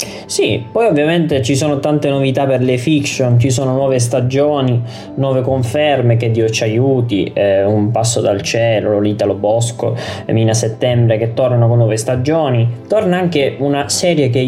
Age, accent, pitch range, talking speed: 20-39, native, 115-150 Hz, 160 wpm